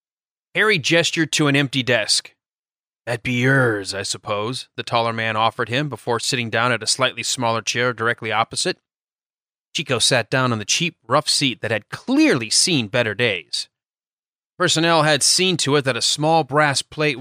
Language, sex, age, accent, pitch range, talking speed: English, male, 30-49, American, 120-160 Hz, 175 wpm